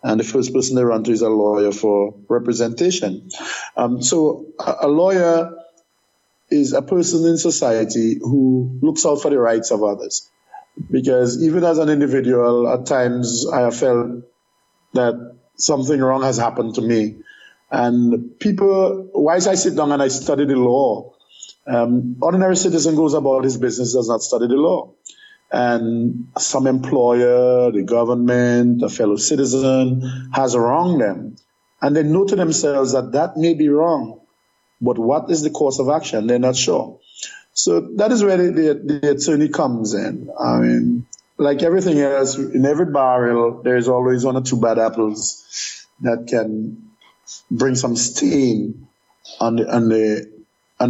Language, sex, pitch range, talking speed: English, male, 120-155 Hz, 160 wpm